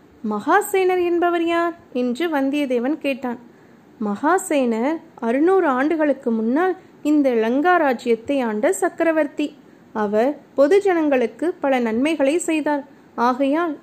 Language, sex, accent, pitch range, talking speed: Tamil, female, native, 255-320 Hz, 85 wpm